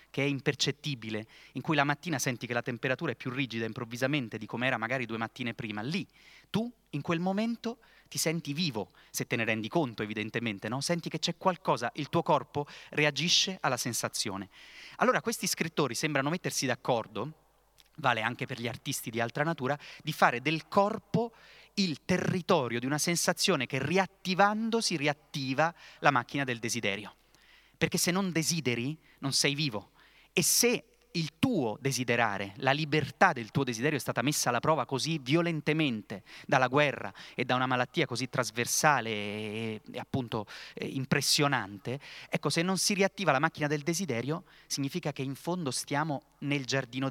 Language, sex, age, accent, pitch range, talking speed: Italian, male, 30-49, native, 125-170 Hz, 165 wpm